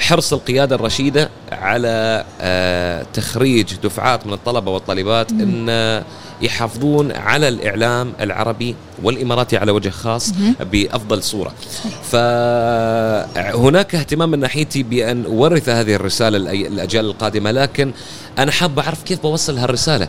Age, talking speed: 30-49, 110 wpm